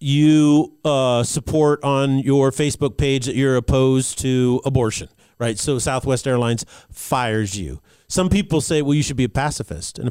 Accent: American